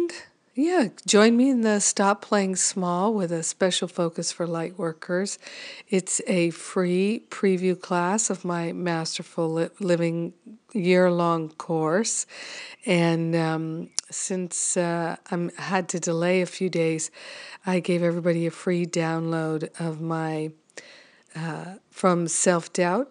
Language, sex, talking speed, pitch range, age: English, female, 120 wpm, 165-185 Hz, 50-69